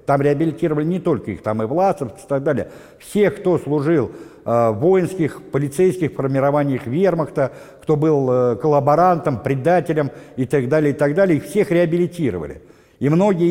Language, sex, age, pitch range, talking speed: Russian, male, 60-79, 135-175 Hz, 150 wpm